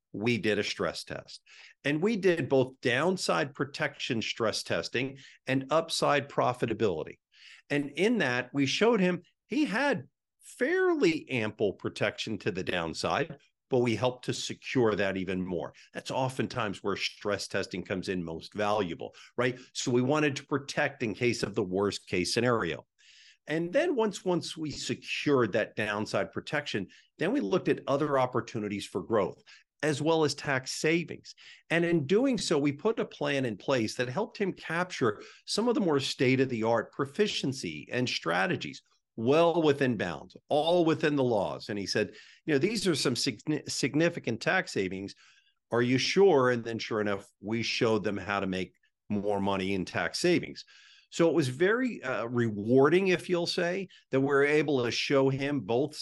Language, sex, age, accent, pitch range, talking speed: English, male, 50-69, American, 115-165 Hz, 165 wpm